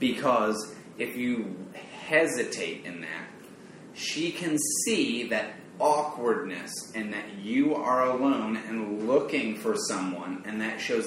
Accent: American